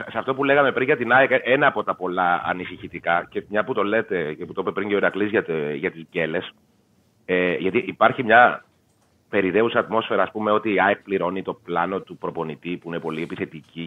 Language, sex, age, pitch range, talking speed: Greek, male, 30-49, 90-135 Hz, 210 wpm